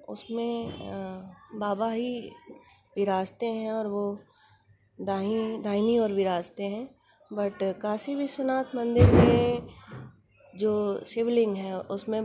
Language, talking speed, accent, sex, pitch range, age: Hindi, 100 wpm, native, female, 185-225 Hz, 20-39